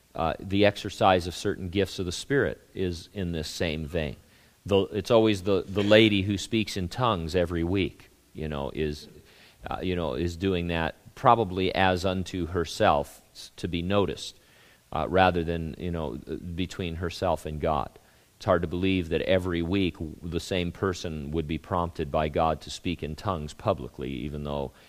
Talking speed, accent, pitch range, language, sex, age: 175 wpm, American, 80-100 Hz, English, male, 40-59